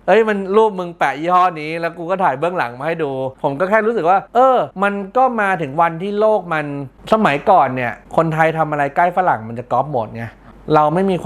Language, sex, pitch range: Thai, male, 140-180 Hz